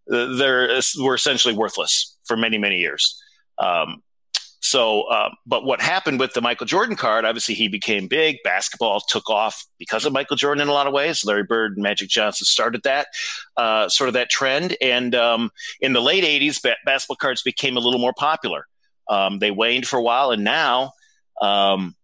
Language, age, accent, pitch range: English, 40-59, American, 105-135 Hz